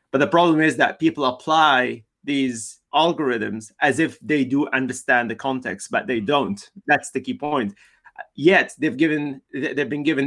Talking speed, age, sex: 170 wpm, 30-49, male